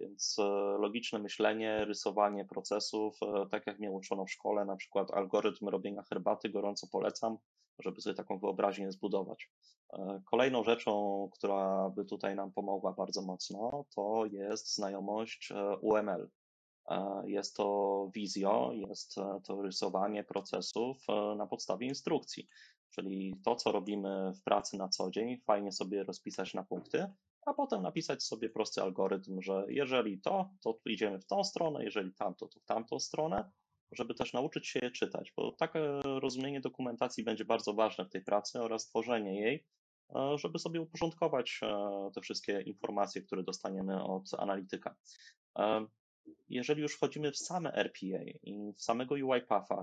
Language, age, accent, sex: Polish, 20-39, native, male